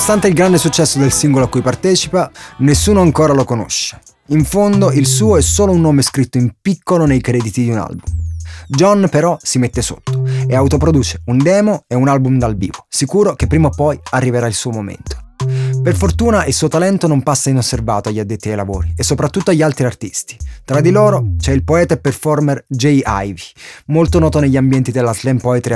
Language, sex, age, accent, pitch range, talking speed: Italian, male, 20-39, native, 110-150 Hz, 200 wpm